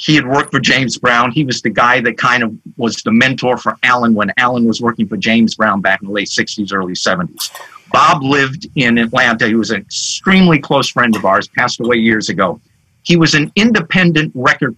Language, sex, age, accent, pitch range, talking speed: English, male, 50-69, American, 120-170 Hz, 215 wpm